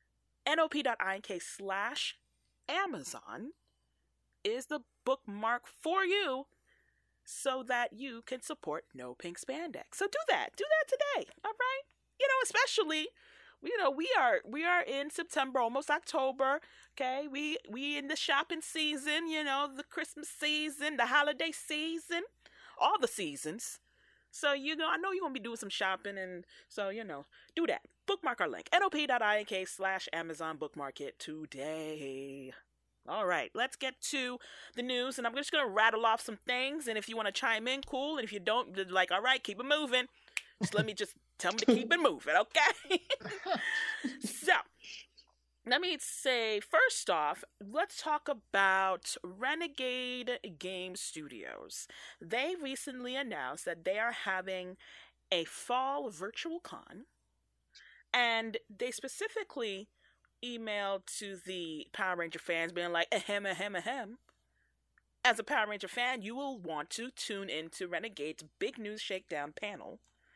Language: English